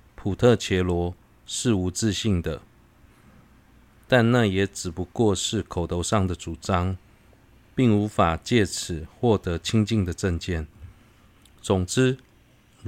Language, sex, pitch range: Chinese, male, 90-115 Hz